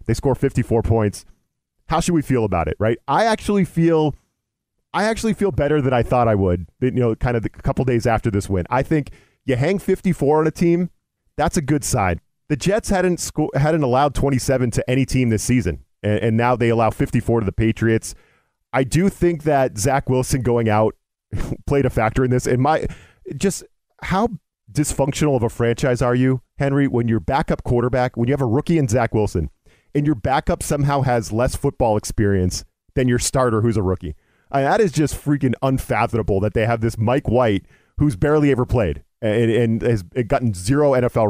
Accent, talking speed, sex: American, 200 wpm, male